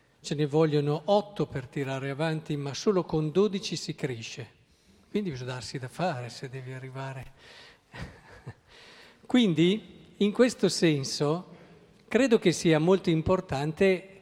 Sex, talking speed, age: male, 125 wpm, 50-69